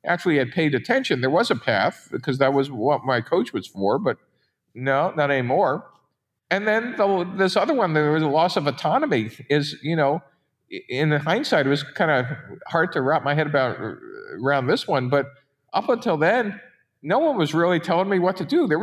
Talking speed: 200 wpm